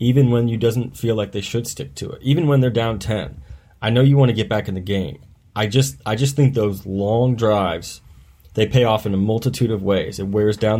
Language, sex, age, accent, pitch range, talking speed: English, male, 30-49, American, 95-120 Hz, 250 wpm